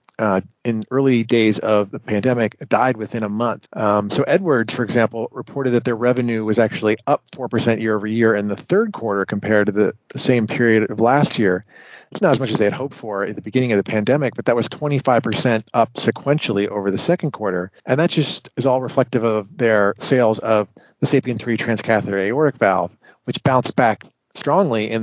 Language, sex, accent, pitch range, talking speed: English, male, American, 105-125 Hz, 205 wpm